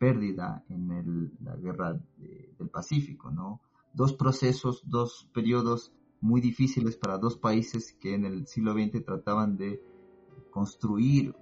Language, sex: Spanish, male